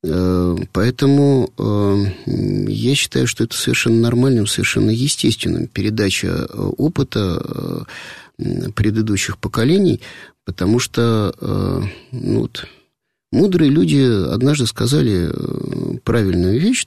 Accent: native